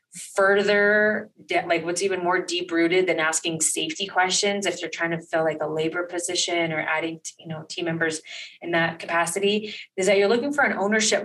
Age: 20-39